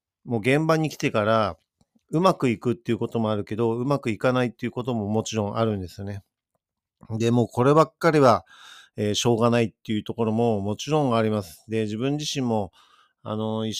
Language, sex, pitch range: Japanese, male, 105-125 Hz